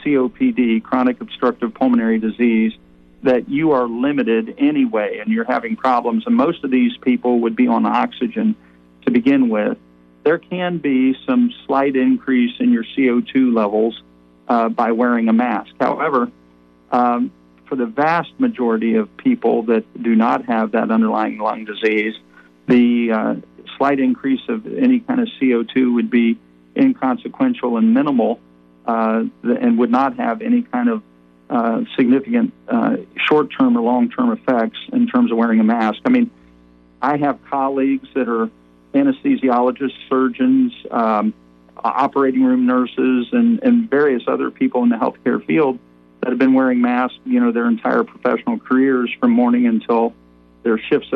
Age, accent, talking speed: 50-69, American, 150 wpm